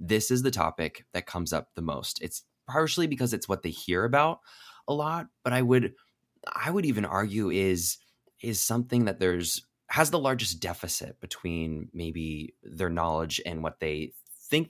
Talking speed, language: 175 wpm, English